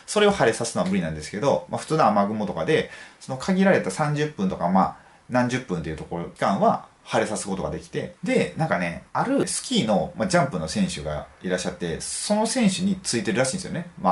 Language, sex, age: Japanese, male, 30-49